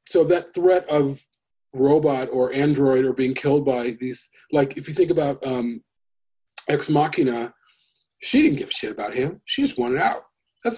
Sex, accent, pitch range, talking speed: male, American, 125-170 Hz, 180 wpm